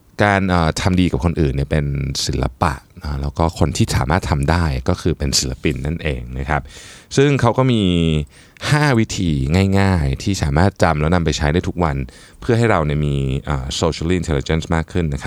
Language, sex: Thai, male